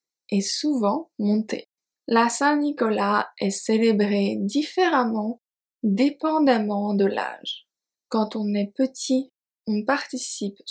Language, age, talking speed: French, 20-39, 100 wpm